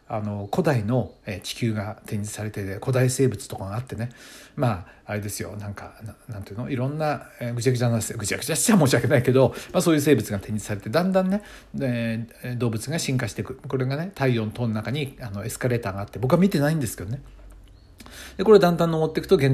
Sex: male